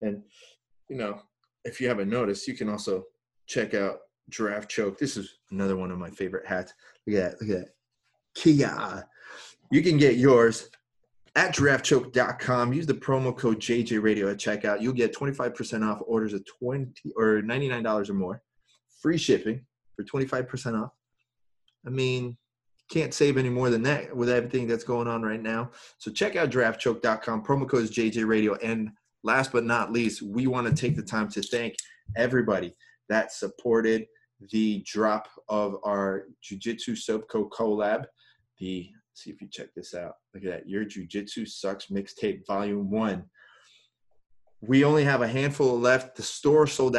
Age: 20-39